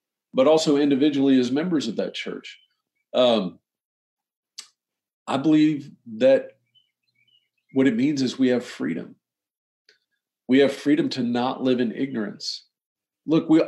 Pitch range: 115-150 Hz